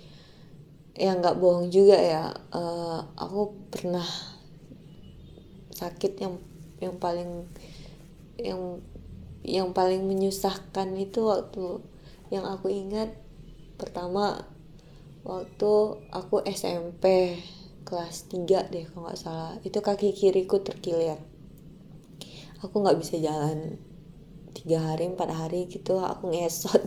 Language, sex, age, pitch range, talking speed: Indonesian, female, 20-39, 165-195 Hz, 105 wpm